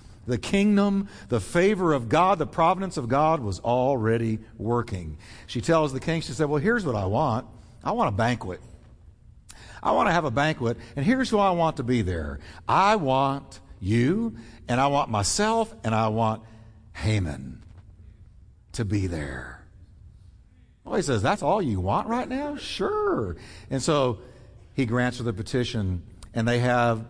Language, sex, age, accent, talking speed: English, male, 60-79, American, 170 wpm